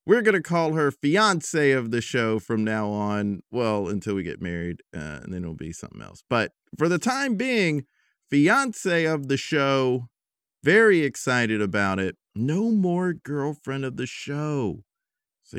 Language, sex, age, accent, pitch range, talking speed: English, male, 40-59, American, 95-130 Hz, 170 wpm